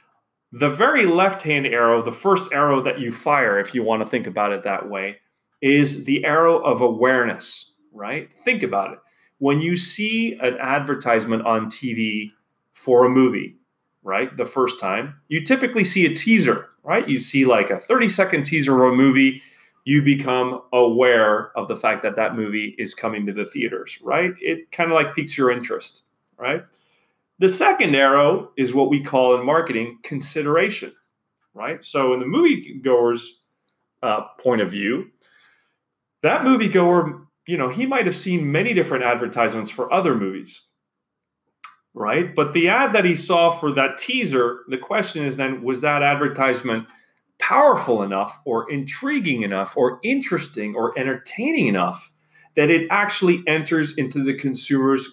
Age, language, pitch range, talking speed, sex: 30-49, English, 125-170 Hz, 160 wpm, male